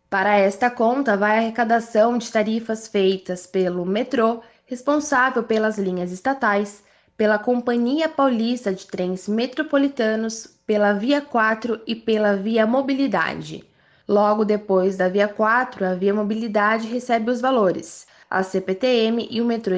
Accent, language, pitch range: Brazilian, Portuguese, 210-245 Hz